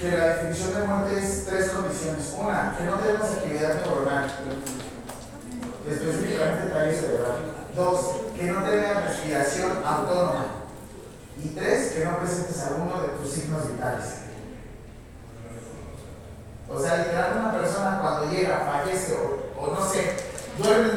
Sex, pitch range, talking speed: male, 140-200 Hz, 140 wpm